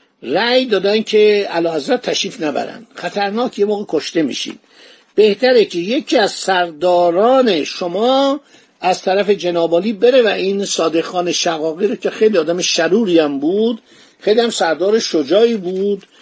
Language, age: Persian, 50-69